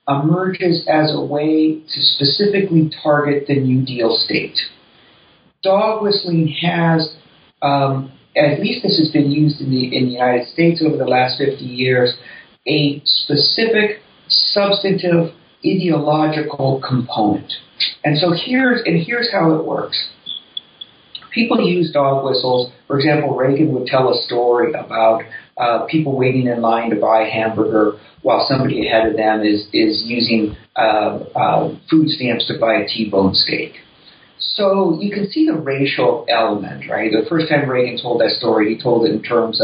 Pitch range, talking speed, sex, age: 115-155 Hz, 150 wpm, male, 40-59